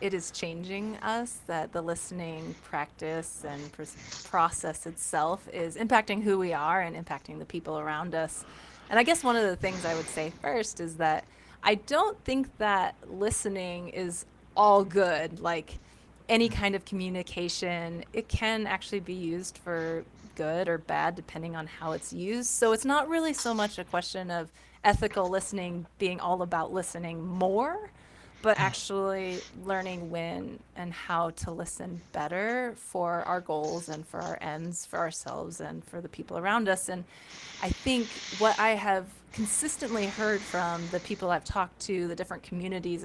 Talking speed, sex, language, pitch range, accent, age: 165 wpm, female, English, 170-215 Hz, American, 30-49